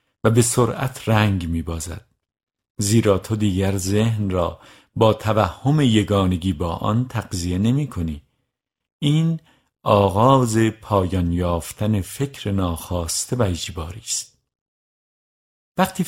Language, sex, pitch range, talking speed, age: Persian, male, 95-125 Hz, 105 wpm, 50-69